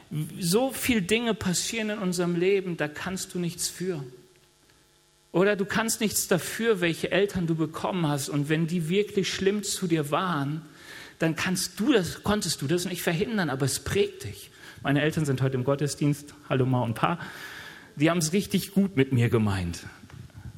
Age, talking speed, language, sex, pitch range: 40-59, 180 wpm, German, male, 145-190 Hz